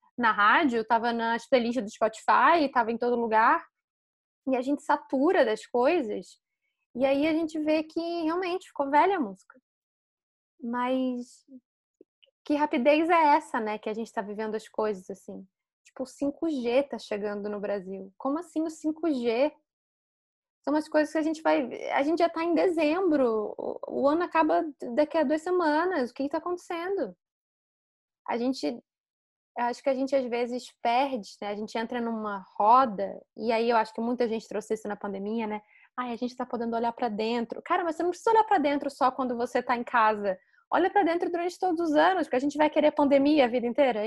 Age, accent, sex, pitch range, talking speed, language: 10-29, Brazilian, female, 225-305 Hz, 195 wpm, Portuguese